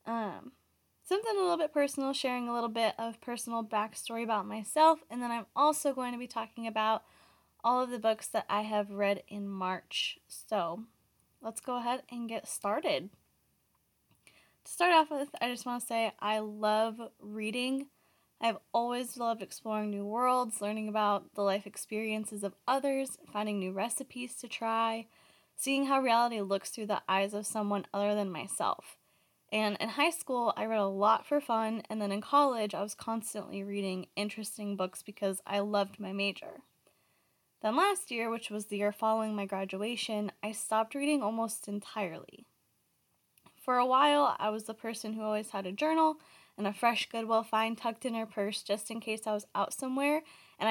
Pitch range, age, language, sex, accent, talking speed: 205-245 Hz, 10-29, English, female, American, 180 wpm